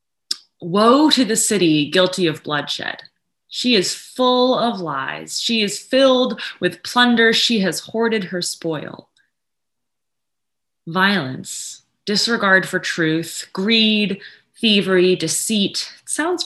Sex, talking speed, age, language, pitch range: female, 110 wpm, 20-39, English, 175-225 Hz